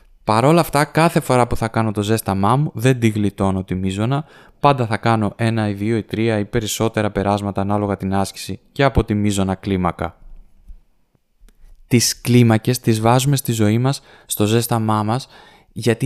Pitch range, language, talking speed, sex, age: 110-135 Hz, Greek, 170 wpm, male, 20-39